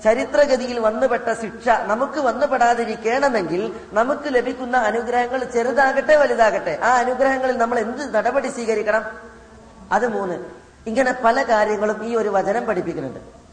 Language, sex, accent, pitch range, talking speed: Malayalam, female, native, 185-250 Hz, 110 wpm